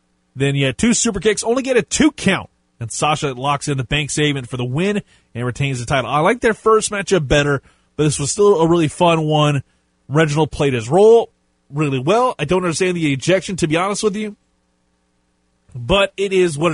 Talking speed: 210 wpm